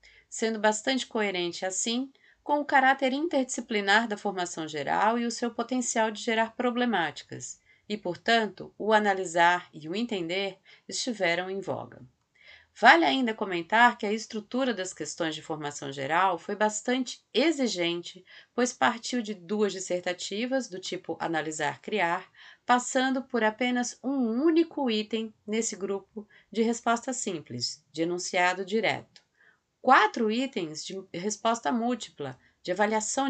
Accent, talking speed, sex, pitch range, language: Brazilian, 130 wpm, female, 180-235 Hz, Portuguese